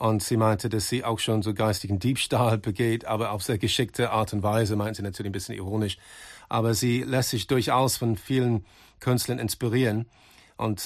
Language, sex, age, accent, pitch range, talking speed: German, male, 40-59, German, 110-125 Hz, 190 wpm